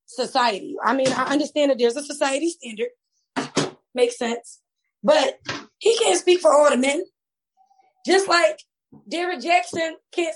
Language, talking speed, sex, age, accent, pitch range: English, 145 wpm, female, 20-39, American, 260-330 Hz